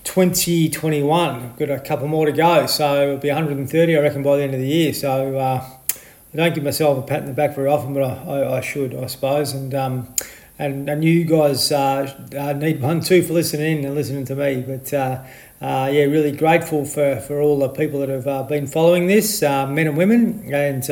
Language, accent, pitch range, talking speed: English, Australian, 135-155 Hz, 220 wpm